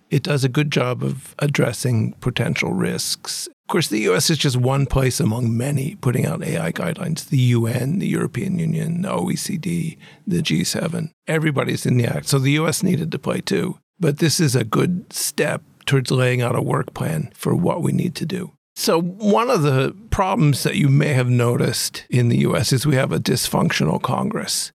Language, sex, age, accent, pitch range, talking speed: English, male, 50-69, American, 135-180 Hz, 195 wpm